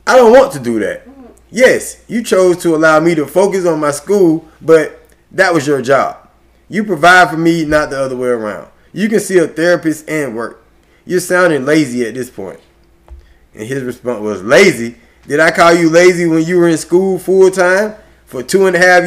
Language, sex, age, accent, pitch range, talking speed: English, male, 20-39, American, 130-180 Hz, 210 wpm